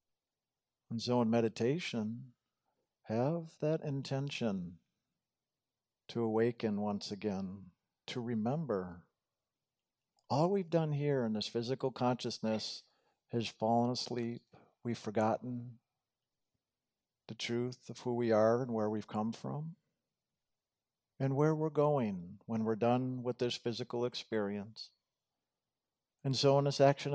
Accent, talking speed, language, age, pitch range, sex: American, 115 wpm, English, 50-69, 115-140 Hz, male